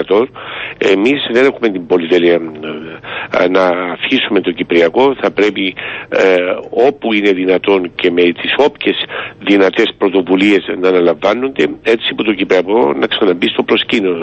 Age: 60-79